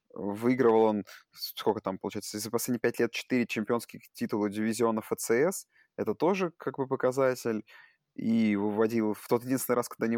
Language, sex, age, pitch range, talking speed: Russian, male, 20-39, 110-135 Hz, 160 wpm